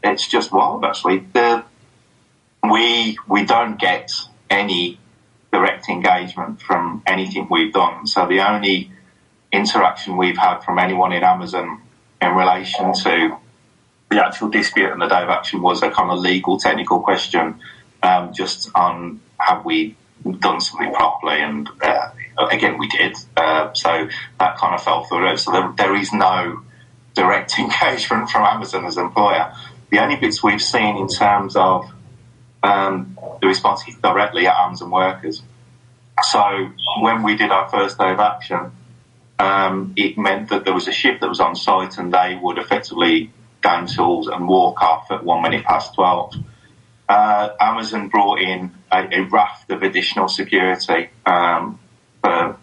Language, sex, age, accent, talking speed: English, male, 30-49, British, 160 wpm